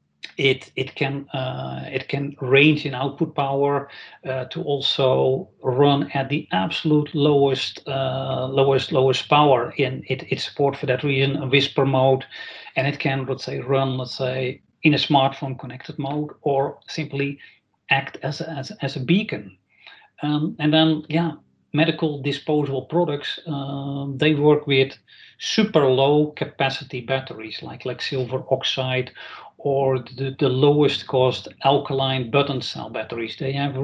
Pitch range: 130-150 Hz